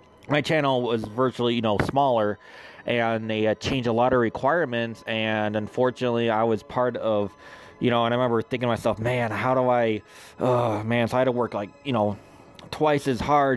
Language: English